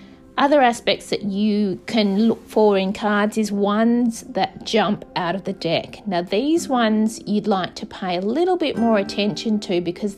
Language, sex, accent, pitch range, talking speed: English, female, Australian, 180-225 Hz, 185 wpm